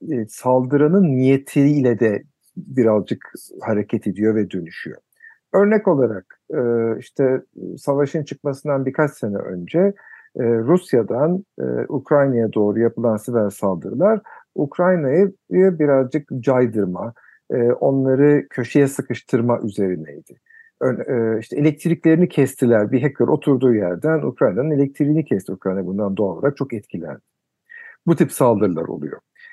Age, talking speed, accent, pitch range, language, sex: 50-69, 115 wpm, native, 115-155 Hz, Turkish, male